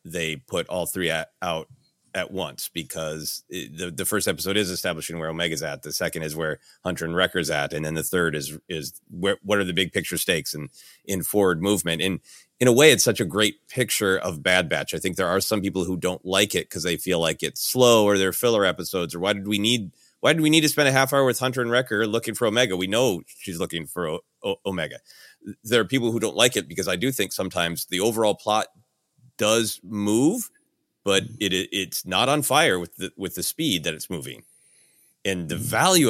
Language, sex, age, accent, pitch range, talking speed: English, male, 30-49, American, 90-120 Hz, 235 wpm